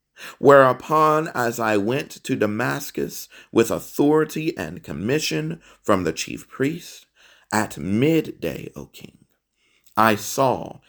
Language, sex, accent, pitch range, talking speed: English, male, American, 110-155 Hz, 110 wpm